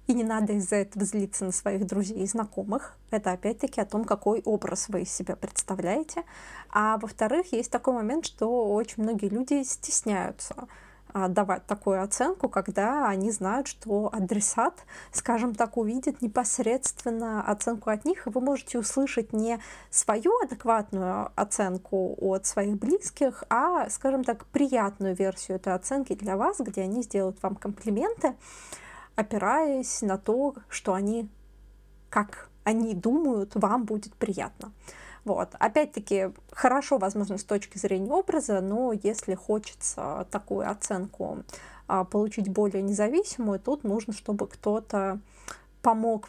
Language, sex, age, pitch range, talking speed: Russian, female, 20-39, 200-240 Hz, 130 wpm